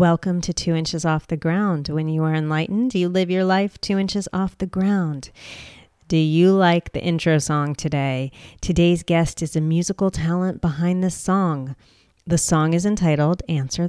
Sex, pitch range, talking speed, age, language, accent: female, 150-180 Hz, 175 wpm, 30-49, English, American